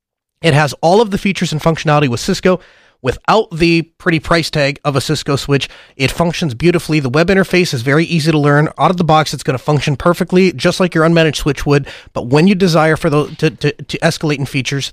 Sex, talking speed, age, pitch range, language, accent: male, 230 wpm, 30-49, 145-175 Hz, English, American